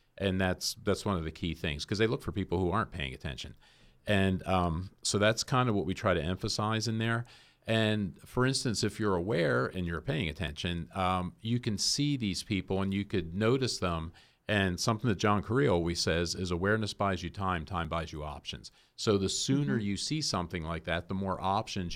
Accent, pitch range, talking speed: American, 90-110 Hz, 215 wpm